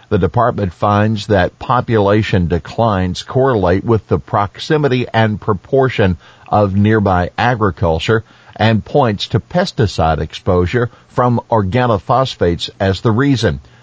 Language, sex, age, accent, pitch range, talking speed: English, male, 50-69, American, 95-120 Hz, 110 wpm